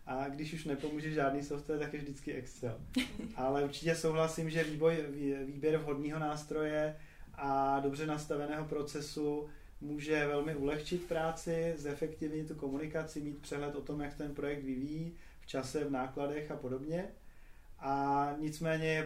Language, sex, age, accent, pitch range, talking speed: Czech, male, 30-49, native, 135-150 Hz, 140 wpm